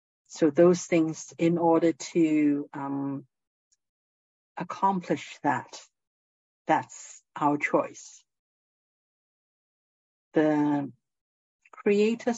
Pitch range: 145-180 Hz